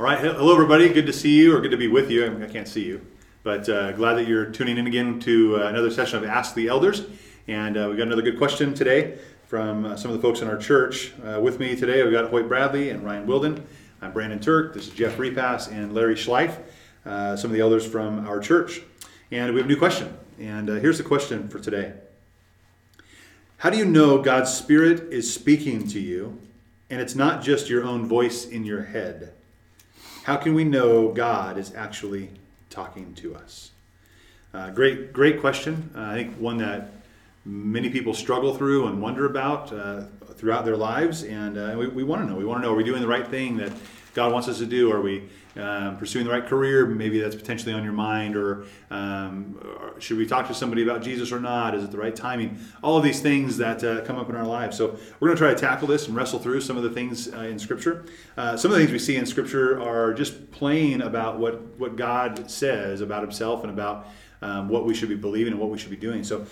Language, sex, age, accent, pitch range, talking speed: English, male, 30-49, American, 105-130 Hz, 235 wpm